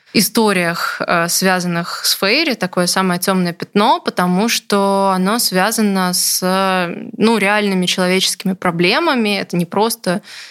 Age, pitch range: 20-39, 180-205 Hz